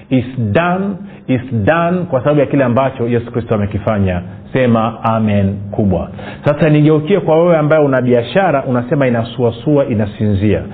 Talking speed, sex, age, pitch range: 140 wpm, male, 40-59, 120-160 Hz